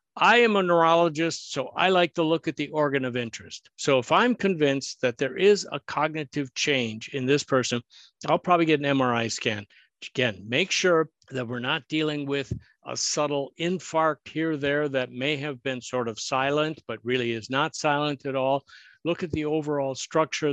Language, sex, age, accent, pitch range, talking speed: English, male, 60-79, American, 130-165 Hz, 195 wpm